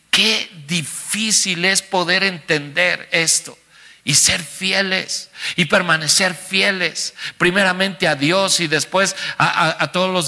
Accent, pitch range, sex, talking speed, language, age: Mexican, 160-190 Hz, male, 130 wpm, Spanish, 50-69